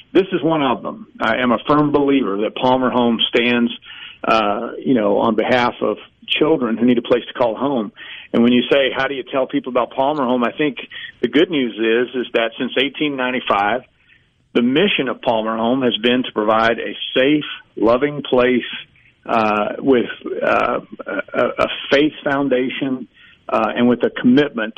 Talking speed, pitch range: 180 wpm, 115-145 Hz